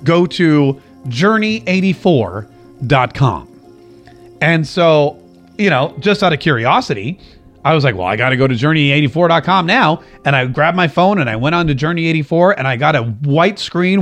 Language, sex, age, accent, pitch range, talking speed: English, male, 30-49, American, 145-190 Hz, 165 wpm